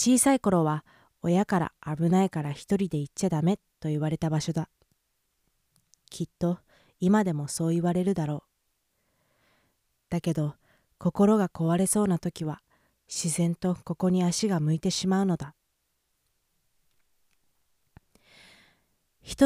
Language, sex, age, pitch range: Japanese, female, 20-39, 155-190 Hz